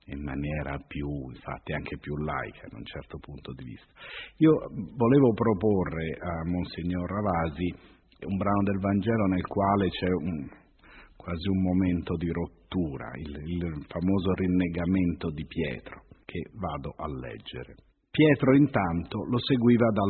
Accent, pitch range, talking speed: native, 85-130 Hz, 135 wpm